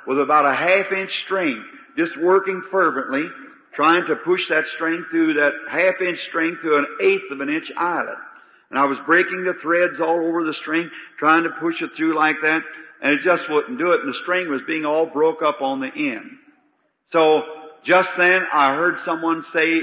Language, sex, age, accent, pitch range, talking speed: English, male, 50-69, American, 150-185 Hz, 190 wpm